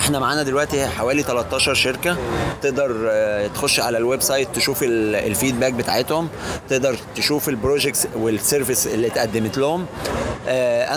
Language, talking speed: Arabic, 120 wpm